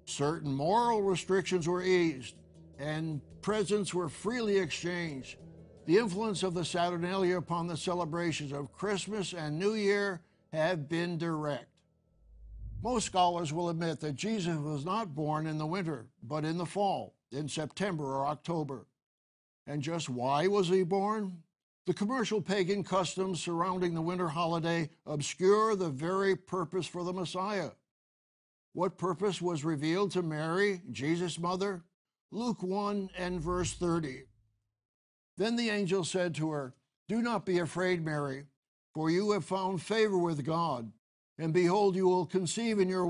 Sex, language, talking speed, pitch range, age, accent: male, English, 145 wpm, 155-190 Hz, 60-79, American